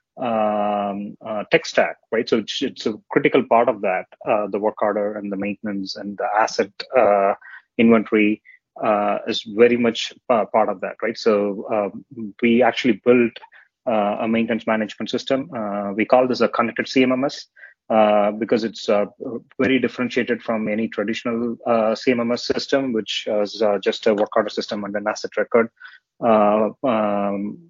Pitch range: 105-120 Hz